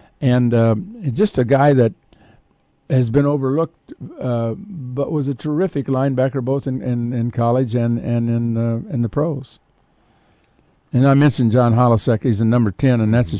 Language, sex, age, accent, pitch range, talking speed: English, male, 60-79, American, 110-135 Hz, 165 wpm